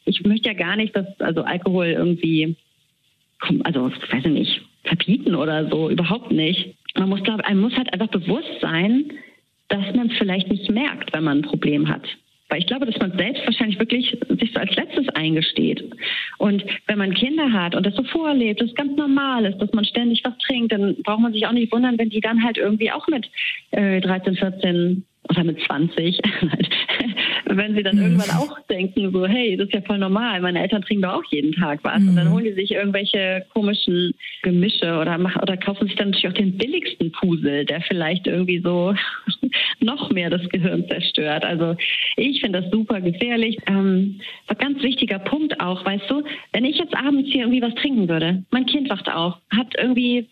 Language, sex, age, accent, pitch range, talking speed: German, female, 40-59, German, 185-245 Hz, 195 wpm